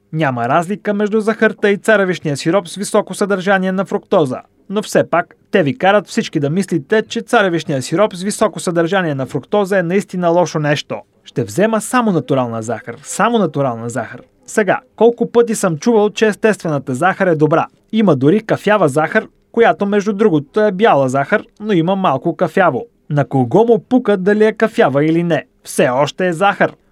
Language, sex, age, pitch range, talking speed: Bulgarian, male, 30-49, 155-215 Hz, 175 wpm